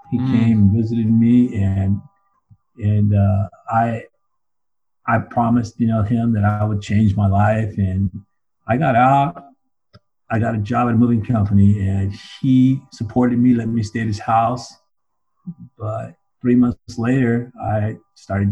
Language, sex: English, male